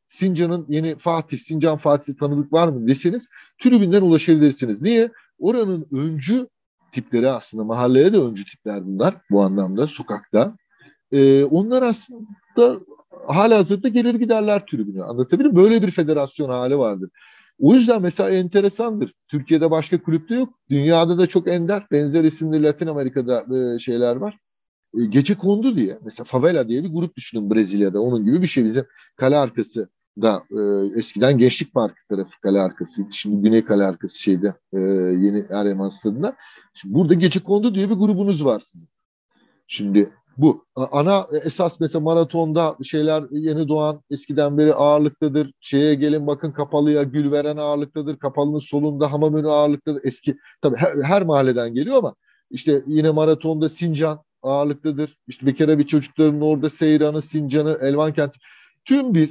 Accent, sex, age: native, male, 40-59